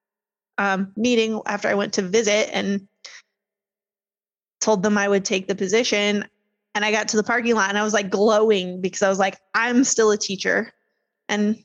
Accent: American